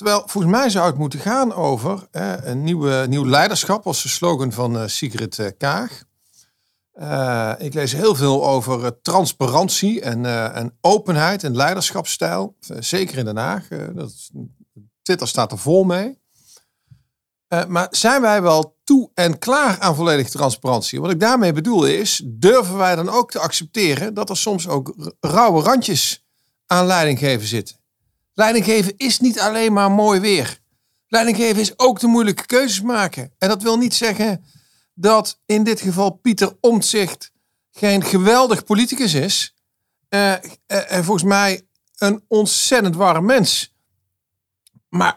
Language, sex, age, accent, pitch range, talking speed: Dutch, male, 50-69, Dutch, 145-215 Hz, 145 wpm